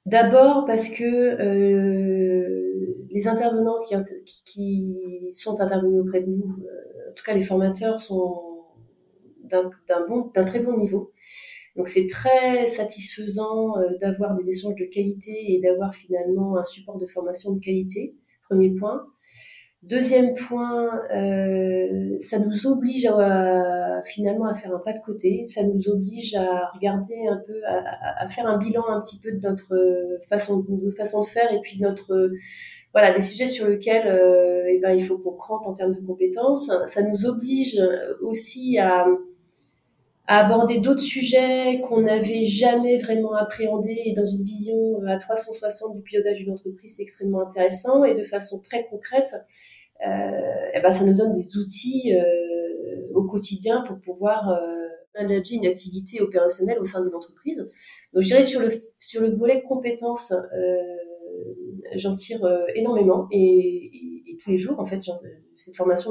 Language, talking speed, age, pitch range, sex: French, 165 wpm, 30-49, 185-225 Hz, female